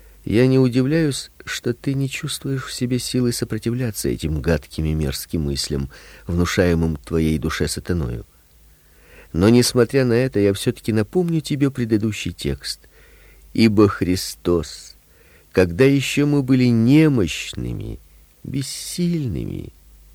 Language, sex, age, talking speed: Russian, male, 50-69, 115 wpm